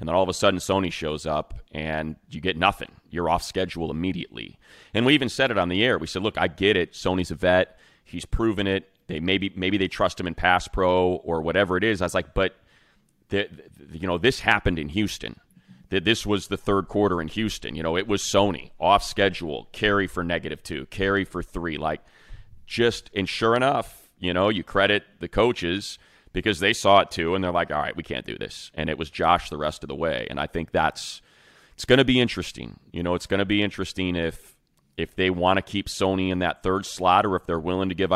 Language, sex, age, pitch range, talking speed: English, male, 30-49, 80-100 Hz, 235 wpm